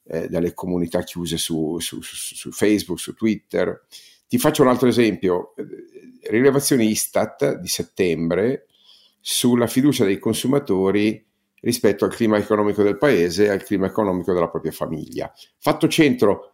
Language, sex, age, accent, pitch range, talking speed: Italian, male, 50-69, native, 95-130 Hz, 140 wpm